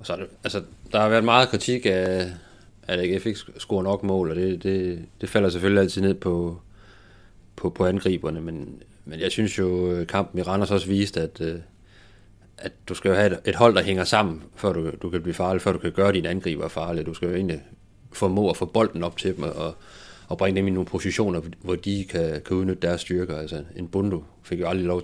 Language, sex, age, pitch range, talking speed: Danish, male, 30-49, 85-100 Hz, 230 wpm